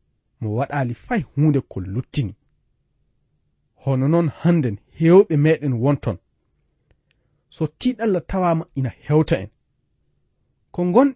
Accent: South African